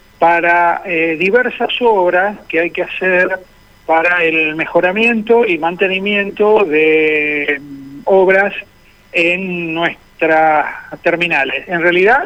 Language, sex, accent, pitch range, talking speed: Spanish, male, Argentinian, 155-200 Hz, 100 wpm